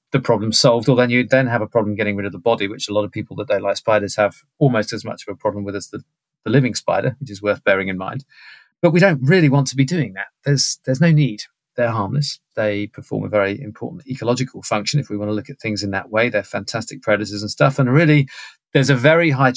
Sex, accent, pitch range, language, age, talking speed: male, British, 110-140 Hz, English, 40-59, 265 wpm